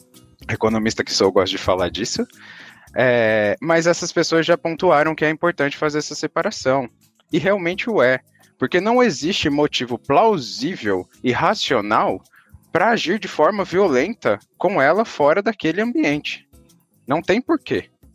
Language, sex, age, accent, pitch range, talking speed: Portuguese, male, 20-39, Brazilian, 110-165 Hz, 145 wpm